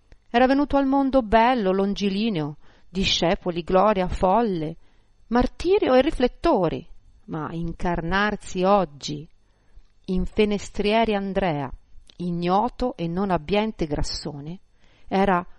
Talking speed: 90 wpm